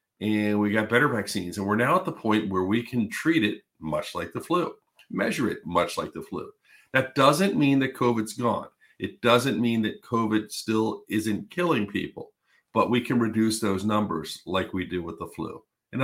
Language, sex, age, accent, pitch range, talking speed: English, male, 50-69, American, 100-120 Hz, 200 wpm